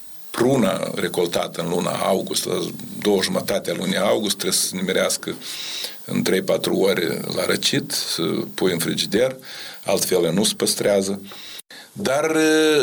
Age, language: 50-69, Romanian